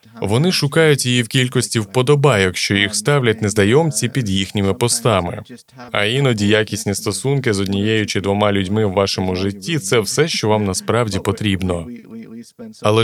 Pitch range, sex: 100-130 Hz, male